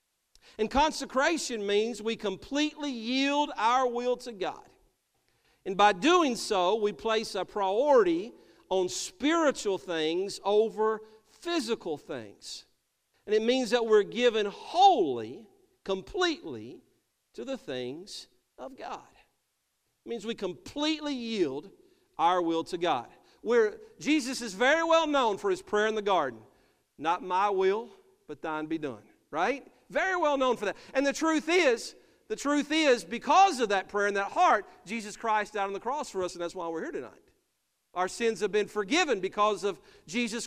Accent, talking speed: American, 155 wpm